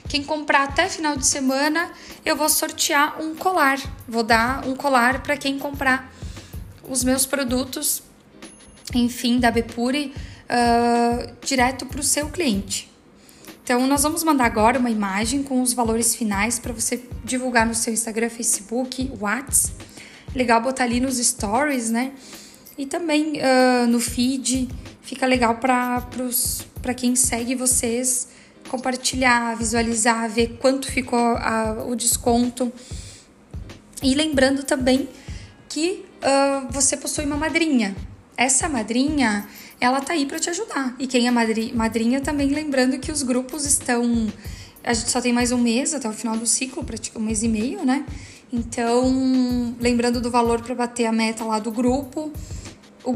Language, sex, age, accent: Portuguese, female, 10-29, Brazilian